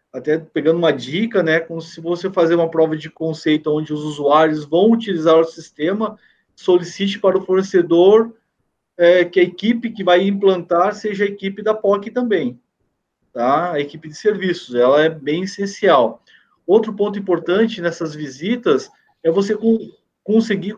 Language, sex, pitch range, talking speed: Portuguese, male, 165-205 Hz, 160 wpm